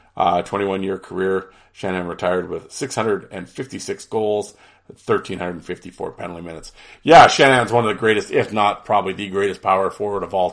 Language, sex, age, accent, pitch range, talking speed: English, male, 40-59, American, 95-115 Hz, 155 wpm